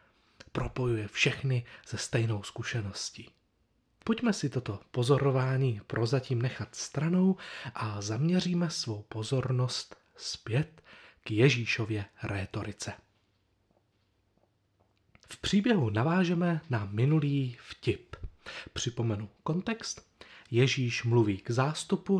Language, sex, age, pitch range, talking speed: Czech, male, 30-49, 110-145 Hz, 85 wpm